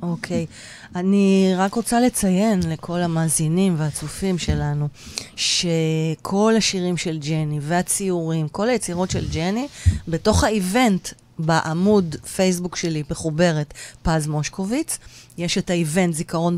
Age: 30-49